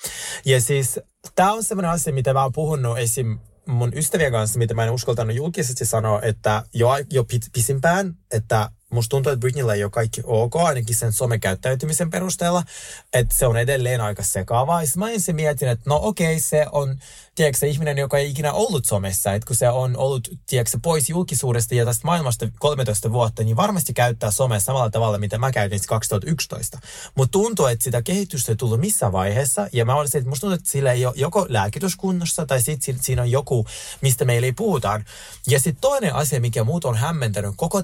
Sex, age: male, 20-39